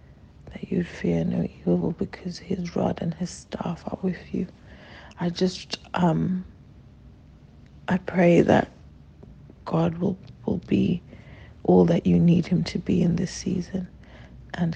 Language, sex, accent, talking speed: English, female, British, 140 wpm